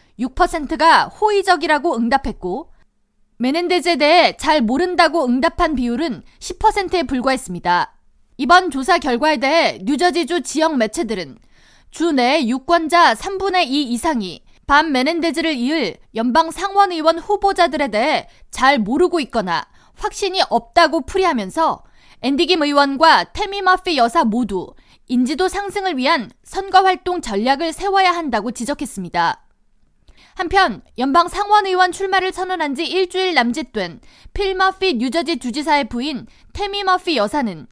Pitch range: 260-365 Hz